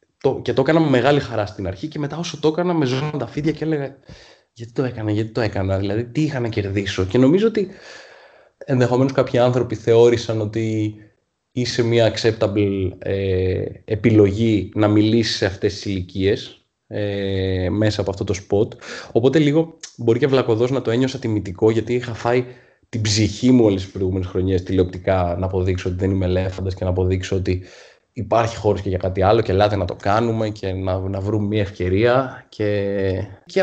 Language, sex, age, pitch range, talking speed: Greek, male, 20-39, 100-130 Hz, 180 wpm